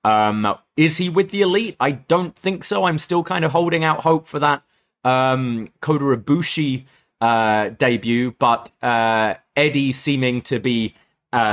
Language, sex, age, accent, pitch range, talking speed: English, male, 20-39, British, 105-145 Hz, 155 wpm